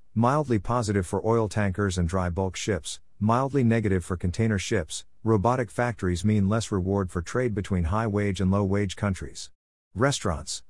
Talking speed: 150 wpm